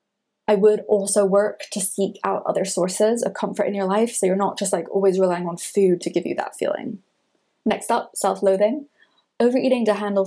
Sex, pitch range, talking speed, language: female, 185-205 Hz, 200 wpm, English